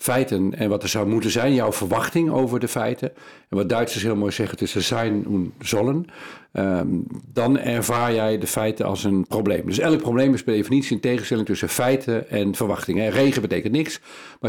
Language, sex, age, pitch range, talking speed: Dutch, male, 50-69, 100-125 Hz, 205 wpm